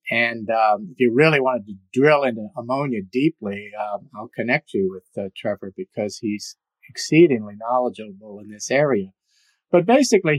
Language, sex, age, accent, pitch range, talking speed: English, male, 50-69, American, 125-175 Hz, 155 wpm